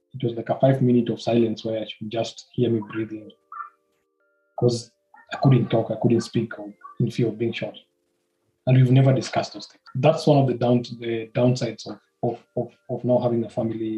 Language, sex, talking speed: Swahili, male, 205 wpm